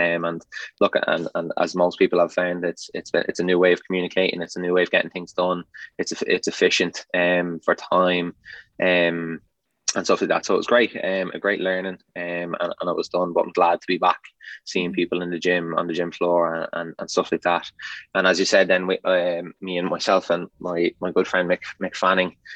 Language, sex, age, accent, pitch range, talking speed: English, male, 20-39, Irish, 85-90 Hz, 240 wpm